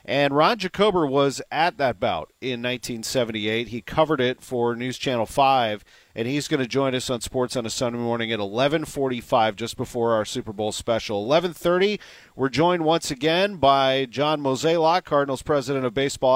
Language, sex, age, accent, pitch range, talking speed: English, male, 40-59, American, 125-160 Hz, 175 wpm